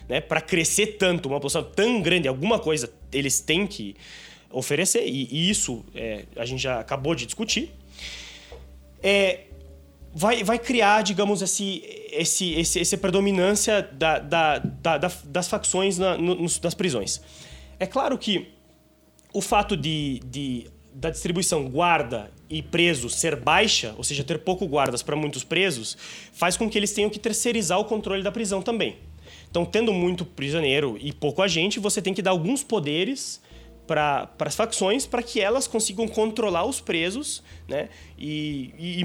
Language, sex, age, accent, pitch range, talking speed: Portuguese, male, 20-39, Brazilian, 140-210 Hz, 160 wpm